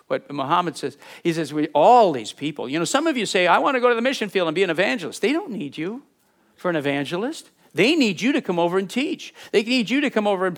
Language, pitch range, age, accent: English, 140-215 Hz, 50-69, American